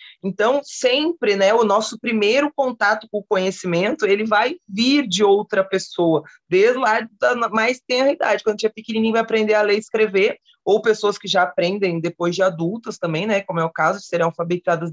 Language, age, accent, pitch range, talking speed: Portuguese, 20-39, Brazilian, 190-250 Hz, 200 wpm